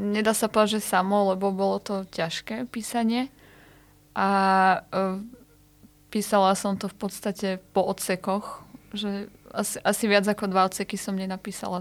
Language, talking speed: Slovak, 140 wpm